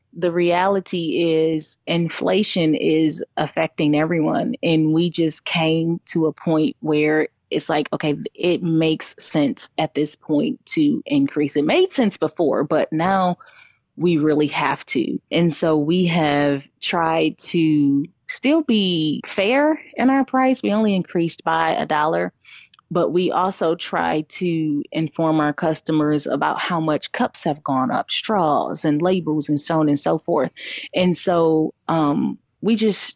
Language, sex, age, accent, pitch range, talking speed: English, female, 20-39, American, 155-180 Hz, 150 wpm